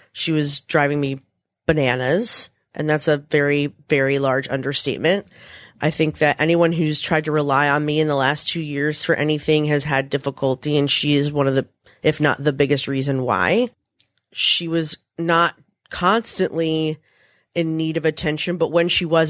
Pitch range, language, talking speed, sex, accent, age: 145-175 Hz, English, 175 wpm, female, American, 30-49